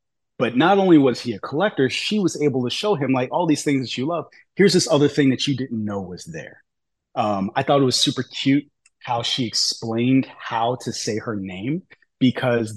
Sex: male